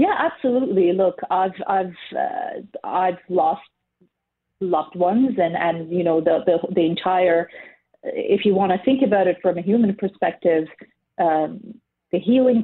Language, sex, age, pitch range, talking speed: English, female, 30-49, 165-205 Hz, 150 wpm